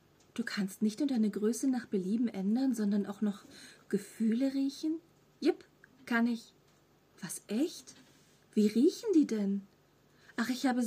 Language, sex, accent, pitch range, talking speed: German, female, German, 200-255 Hz, 145 wpm